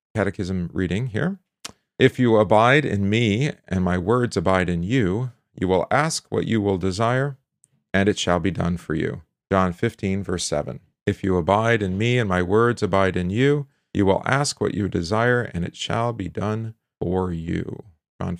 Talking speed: 185 wpm